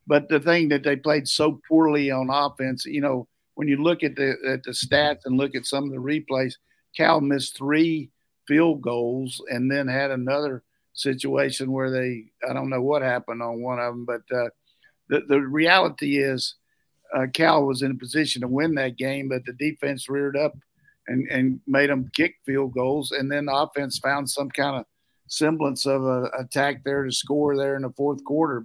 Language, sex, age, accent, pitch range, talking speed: English, male, 50-69, American, 130-145 Hz, 200 wpm